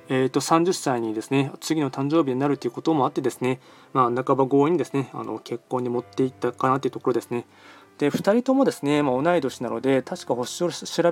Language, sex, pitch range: Japanese, male, 125-150 Hz